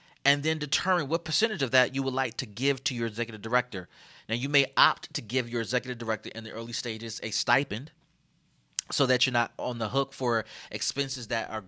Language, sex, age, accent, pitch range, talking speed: English, male, 30-49, American, 115-150 Hz, 215 wpm